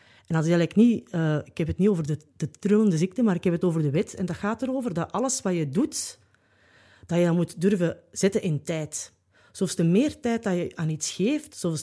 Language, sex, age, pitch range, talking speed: English, female, 30-49, 155-210 Hz, 235 wpm